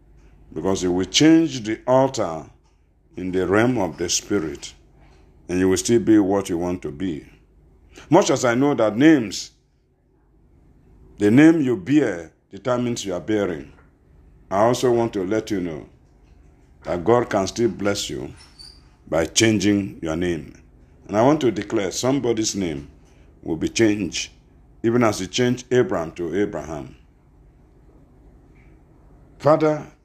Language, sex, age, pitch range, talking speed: English, male, 50-69, 90-120 Hz, 140 wpm